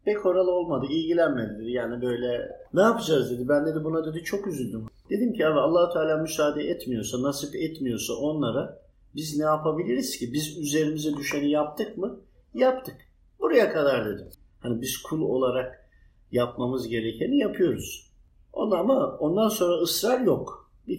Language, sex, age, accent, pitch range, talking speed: Turkish, male, 50-69, native, 130-175 Hz, 145 wpm